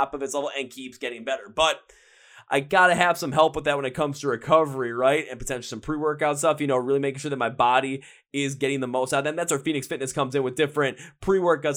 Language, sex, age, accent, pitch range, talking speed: English, male, 20-39, American, 135-160 Hz, 255 wpm